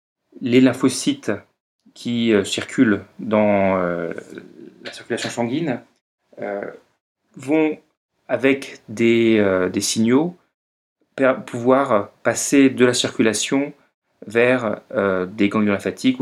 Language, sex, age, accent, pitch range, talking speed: French, male, 30-49, French, 100-125 Hz, 100 wpm